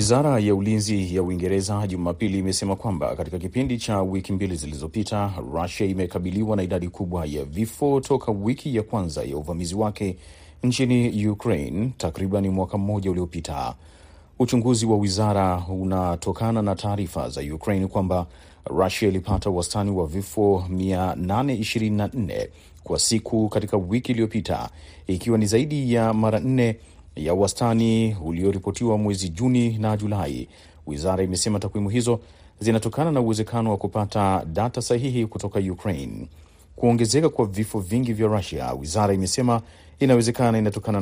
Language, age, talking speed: Swahili, 40-59, 130 wpm